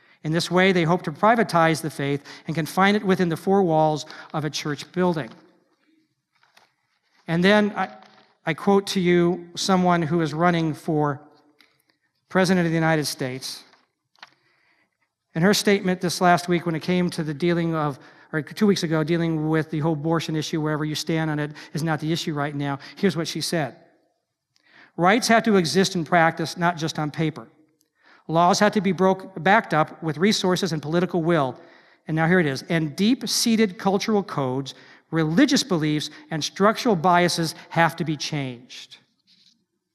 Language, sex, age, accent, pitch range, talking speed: English, male, 50-69, American, 155-195 Hz, 170 wpm